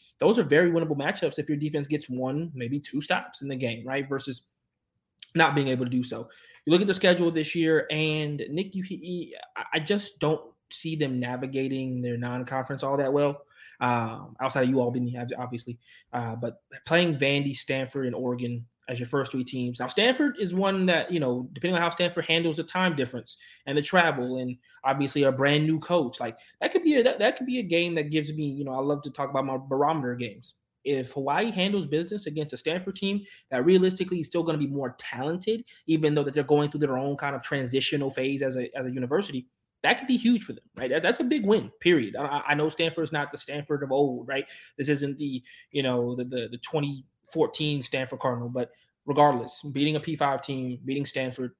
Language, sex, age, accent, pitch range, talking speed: English, male, 20-39, American, 125-160 Hz, 220 wpm